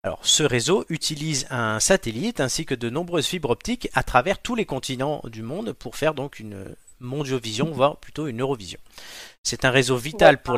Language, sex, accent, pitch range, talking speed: French, male, French, 115-155 Hz, 185 wpm